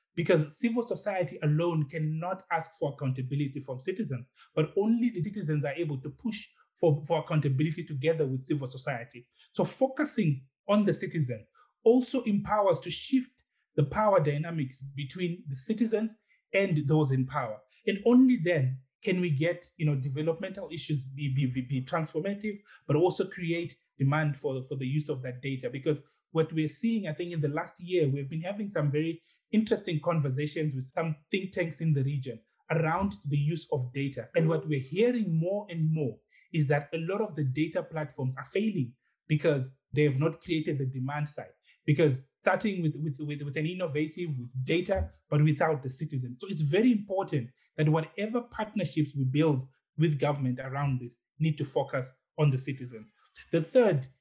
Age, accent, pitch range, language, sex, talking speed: 30-49, Nigerian, 140-180 Hz, English, male, 175 wpm